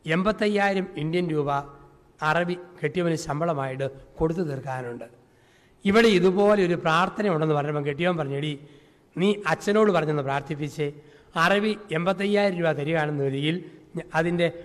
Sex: male